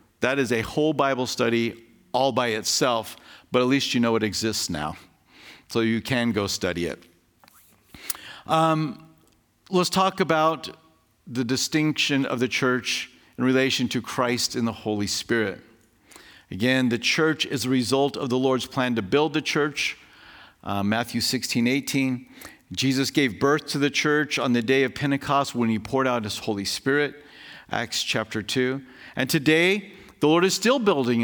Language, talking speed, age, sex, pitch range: English, 165 wpm, 50-69, male, 120-165 Hz